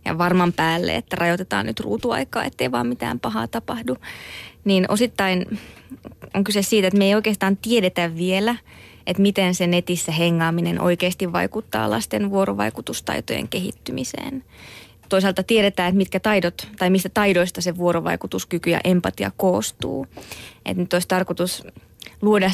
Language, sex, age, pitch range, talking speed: Finnish, female, 20-39, 130-195 Hz, 135 wpm